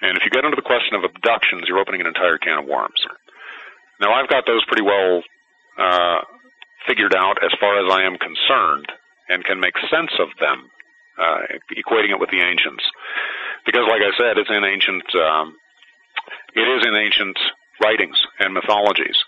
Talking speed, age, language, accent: 180 wpm, 40-59, English, American